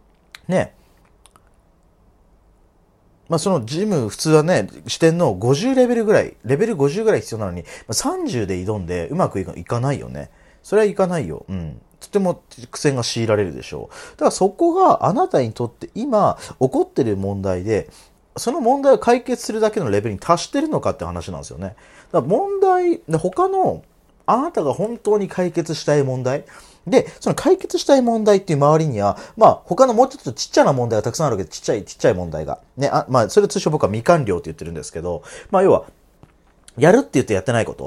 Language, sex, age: Japanese, male, 40-59